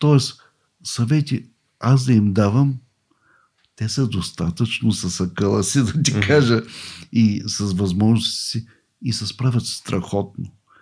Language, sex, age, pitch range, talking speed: Bulgarian, male, 60-79, 105-135 Hz, 135 wpm